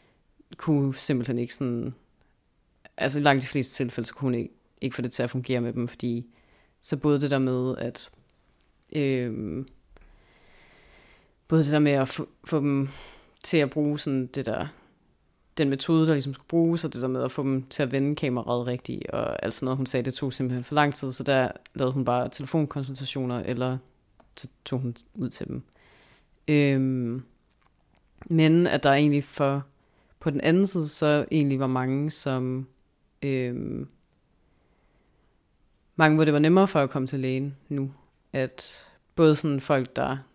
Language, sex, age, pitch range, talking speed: Danish, female, 30-49, 125-145 Hz, 175 wpm